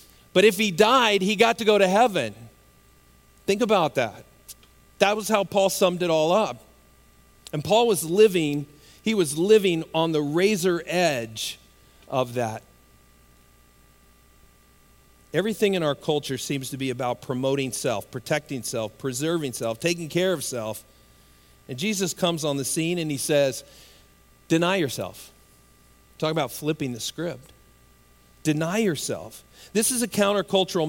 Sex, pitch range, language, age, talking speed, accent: male, 125-180 Hz, English, 40-59, 145 wpm, American